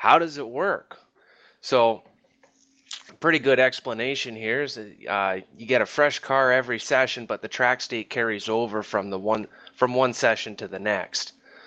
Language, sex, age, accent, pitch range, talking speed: English, male, 20-39, American, 105-130 Hz, 175 wpm